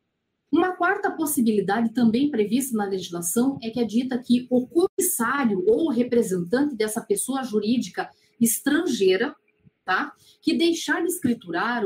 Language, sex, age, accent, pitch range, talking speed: Portuguese, female, 40-59, Brazilian, 200-260 Hz, 125 wpm